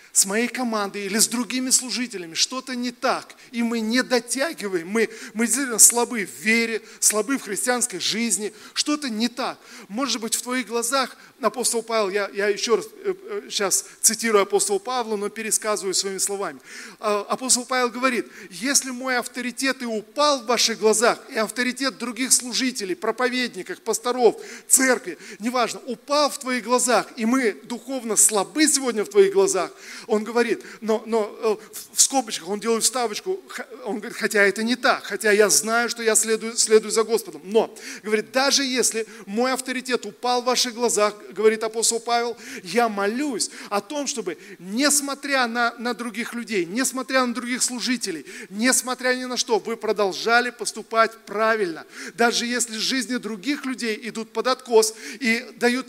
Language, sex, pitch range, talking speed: Russian, male, 215-255 Hz, 155 wpm